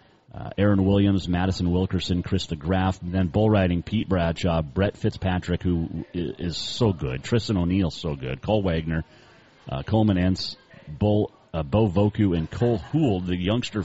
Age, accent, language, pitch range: 40-59, American, English, 85-105 Hz